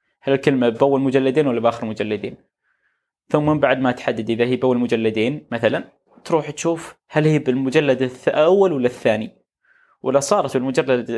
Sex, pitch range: male, 115-140 Hz